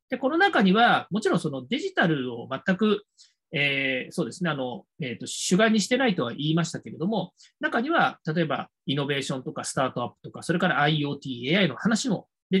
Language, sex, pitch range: Japanese, male, 155-235 Hz